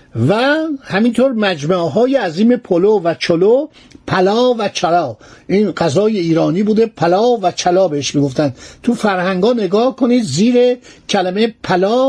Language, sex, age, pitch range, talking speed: Persian, male, 60-79, 175-235 Hz, 135 wpm